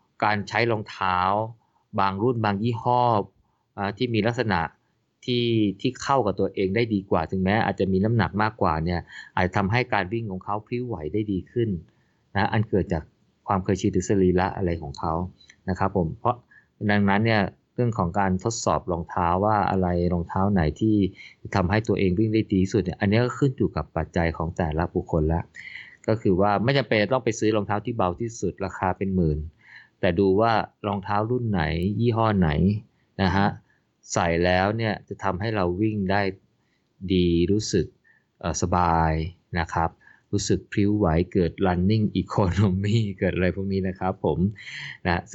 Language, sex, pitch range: Thai, male, 90-110 Hz